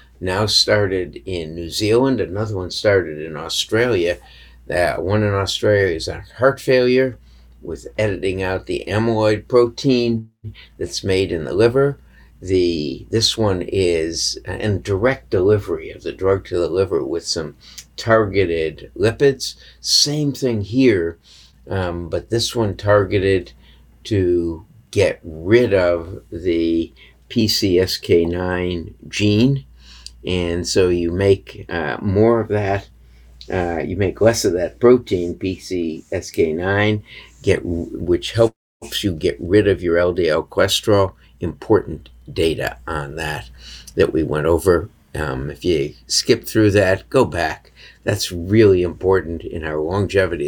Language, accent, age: English, American, 50-69